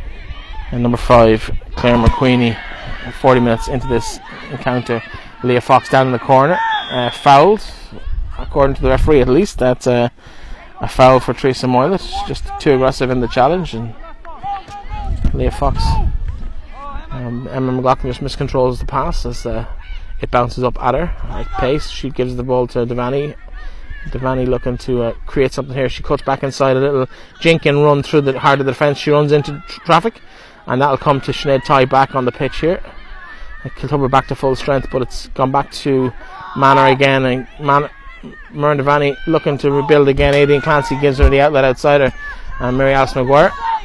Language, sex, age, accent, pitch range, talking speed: English, male, 20-39, Irish, 125-150 Hz, 180 wpm